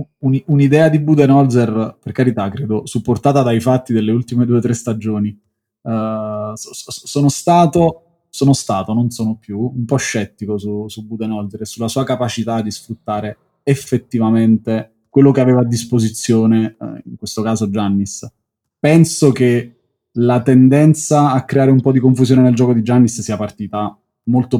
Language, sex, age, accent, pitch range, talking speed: Italian, male, 20-39, native, 110-135 Hz, 150 wpm